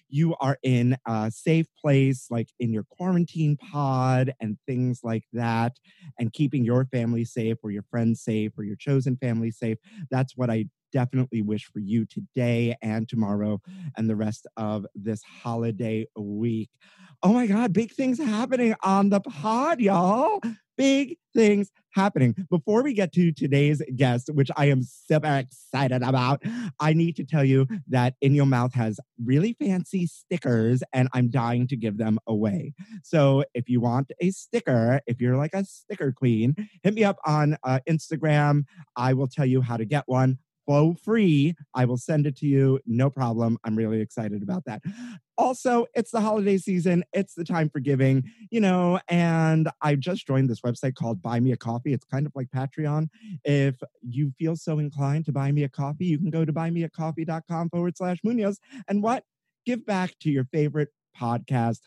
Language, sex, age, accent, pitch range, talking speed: English, male, 30-49, American, 120-175 Hz, 180 wpm